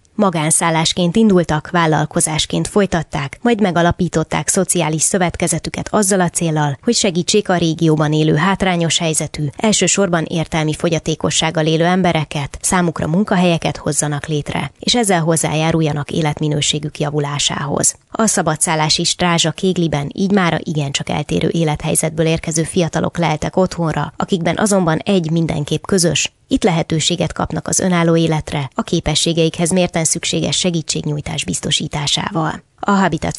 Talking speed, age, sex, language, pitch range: 115 wpm, 20-39, female, Hungarian, 155-180 Hz